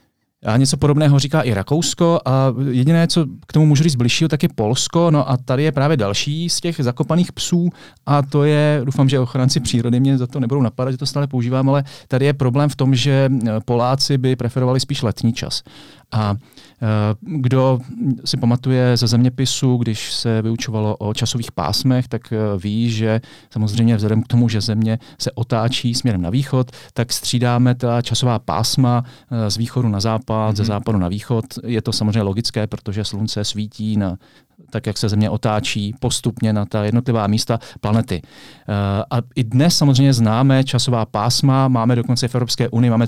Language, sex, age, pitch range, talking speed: Czech, male, 40-59, 110-130 Hz, 180 wpm